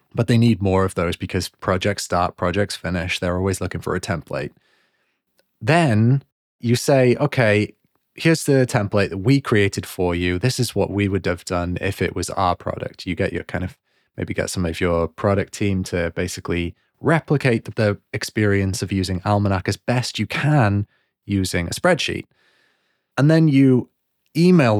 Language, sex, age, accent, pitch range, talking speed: English, male, 20-39, British, 95-125 Hz, 175 wpm